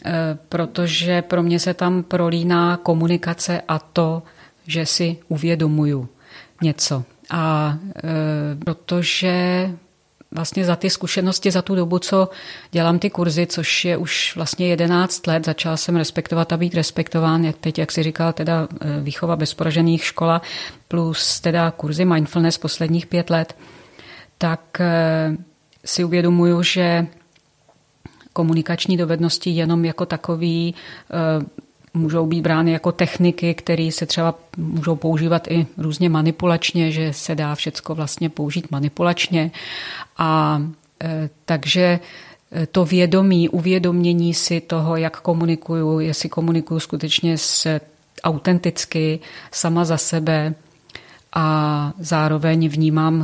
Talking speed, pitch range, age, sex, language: 115 wpm, 160-175 Hz, 30-49, female, Czech